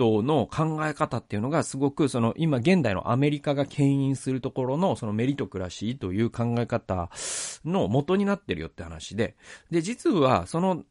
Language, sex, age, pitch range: Japanese, male, 40-59, 100-165 Hz